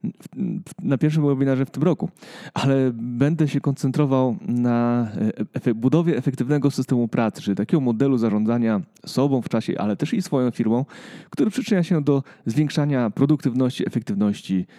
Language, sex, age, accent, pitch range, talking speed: Polish, male, 30-49, native, 115-145 Hz, 140 wpm